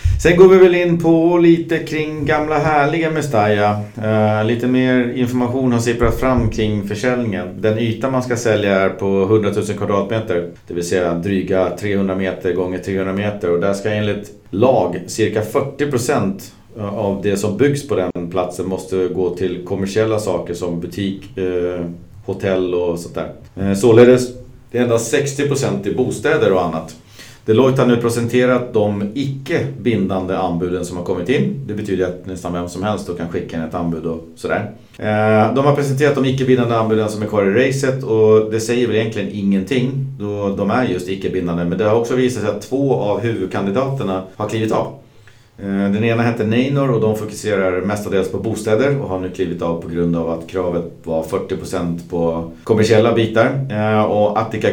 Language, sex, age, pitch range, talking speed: Swedish, male, 40-59, 95-120 Hz, 180 wpm